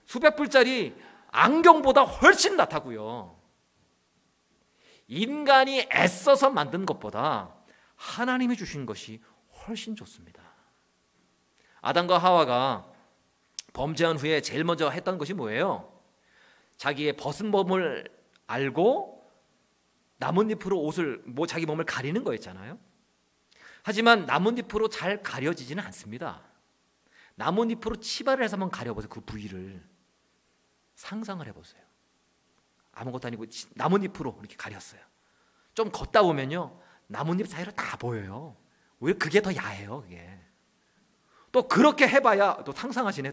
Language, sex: Korean, male